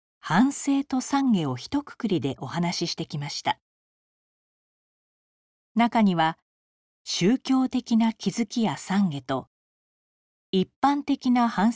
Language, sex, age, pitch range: Japanese, female, 40-59, 150-240 Hz